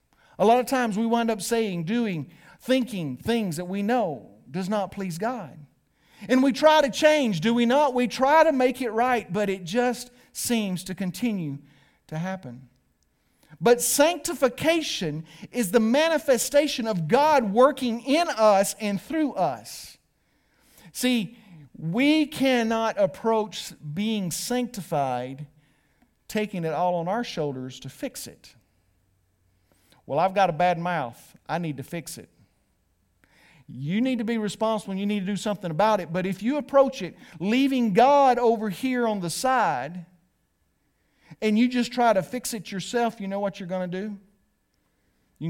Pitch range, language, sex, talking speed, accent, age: 160-240 Hz, English, male, 160 wpm, American, 50-69